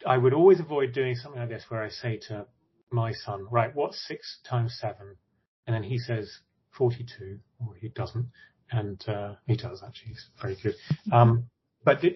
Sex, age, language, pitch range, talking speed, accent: male, 30-49, English, 115-140 Hz, 185 wpm, British